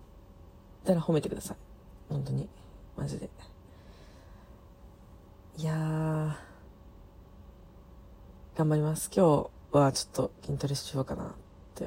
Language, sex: Japanese, female